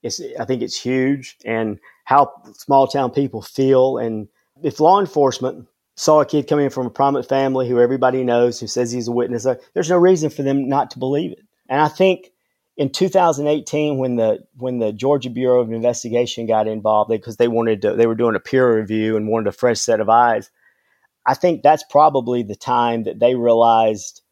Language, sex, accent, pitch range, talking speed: English, male, American, 115-145 Hz, 195 wpm